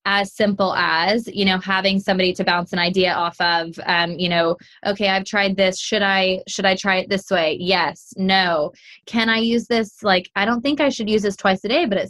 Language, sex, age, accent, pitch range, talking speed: English, female, 20-39, American, 185-215 Hz, 235 wpm